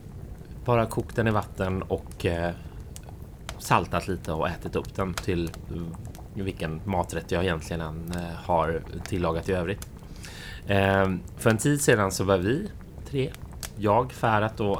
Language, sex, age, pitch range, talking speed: Swedish, male, 30-49, 85-105 Hz, 130 wpm